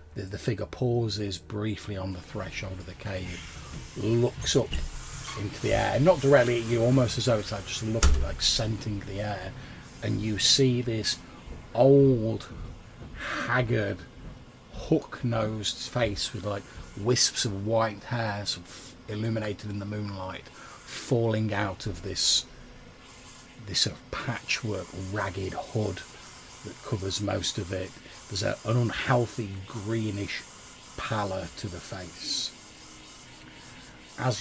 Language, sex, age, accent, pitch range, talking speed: English, male, 40-59, British, 95-120 Hz, 130 wpm